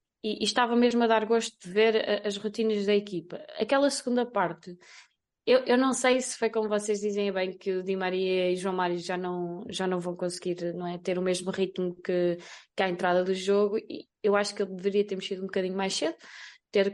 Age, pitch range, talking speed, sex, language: 20-39, 195-240 Hz, 215 wpm, female, Portuguese